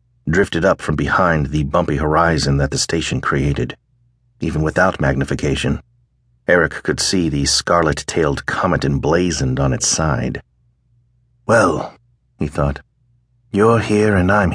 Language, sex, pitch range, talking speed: English, male, 75-115 Hz, 130 wpm